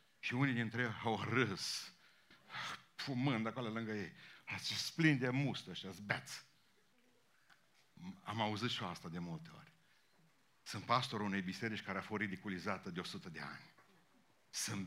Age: 60-79